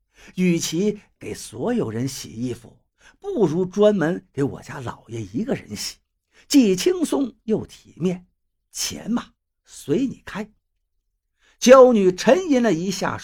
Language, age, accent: Chinese, 50-69, native